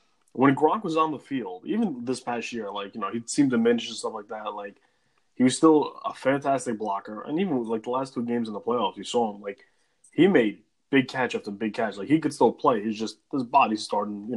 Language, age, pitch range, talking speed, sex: English, 20-39, 110-155 Hz, 245 wpm, male